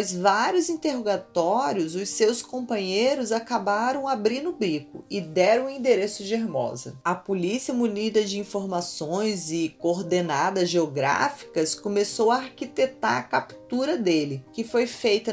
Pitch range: 190-255 Hz